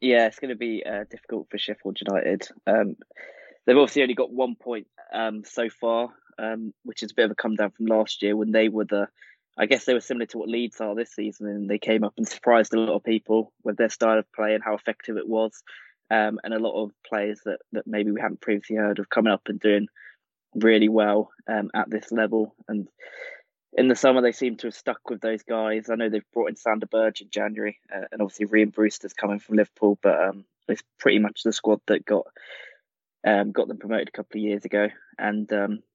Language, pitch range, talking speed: English, 105-115 Hz, 230 wpm